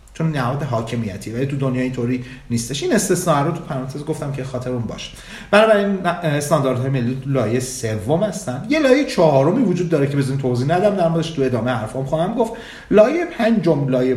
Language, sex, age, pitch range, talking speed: Persian, male, 40-59, 115-155 Hz, 175 wpm